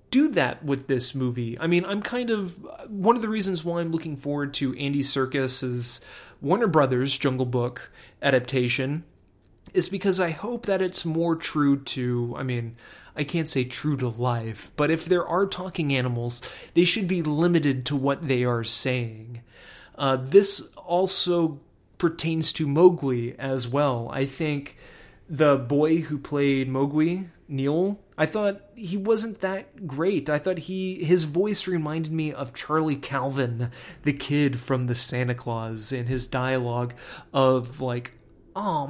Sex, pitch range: male, 130-185 Hz